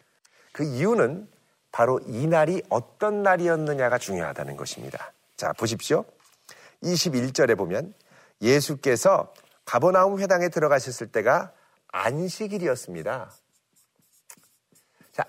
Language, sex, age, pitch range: Korean, male, 40-59, 170-230 Hz